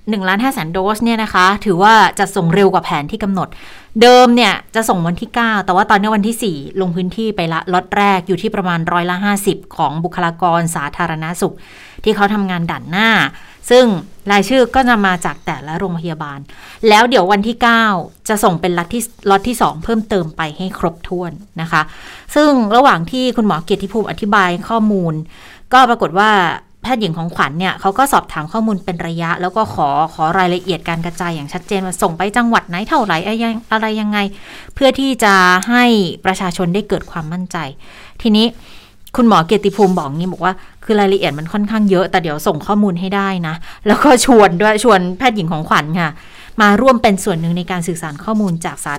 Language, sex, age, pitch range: Thai, female, 30-49, 175-220 Hz